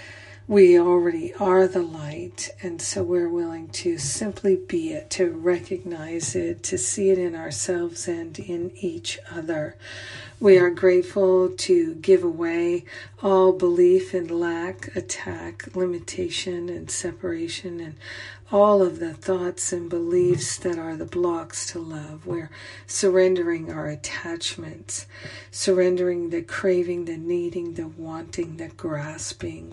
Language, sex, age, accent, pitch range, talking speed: English, female, 50-69, American, 150-180 Hz, 130 wpm